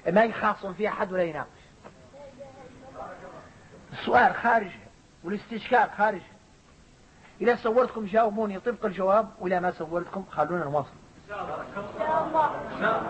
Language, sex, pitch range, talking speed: Arabic, male, 185-245 Hz, 105 wpm